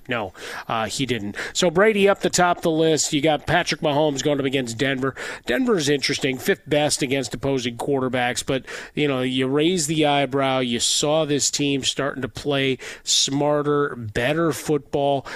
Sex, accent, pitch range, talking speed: male, American, 130-155 Hz, 170 wpm